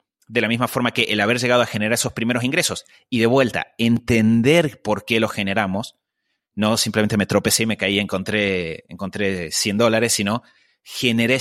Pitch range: 105-130 Hz